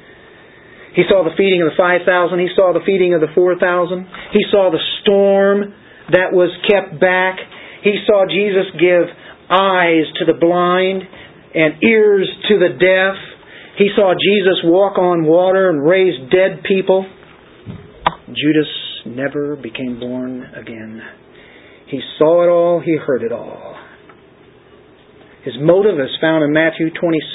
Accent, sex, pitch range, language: American, male, 150-190 Hz, English